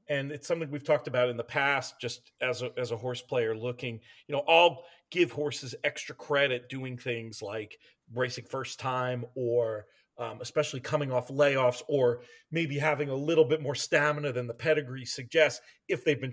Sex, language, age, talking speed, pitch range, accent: male, English, 40-59, 185 wpm, 125-155 Hz, American